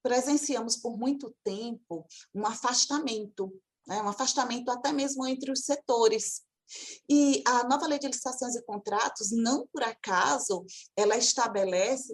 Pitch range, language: 210-290 Hz, Portuguese